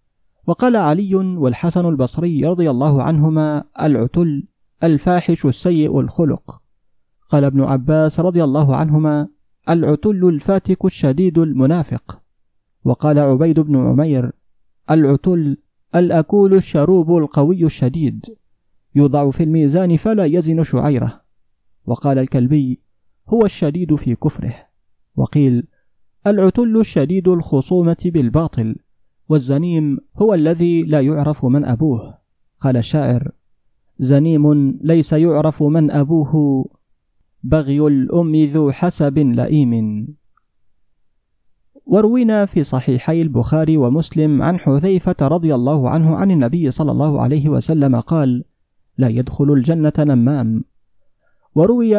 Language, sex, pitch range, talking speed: Arabic, male, 135-165 Hz, 100 wpm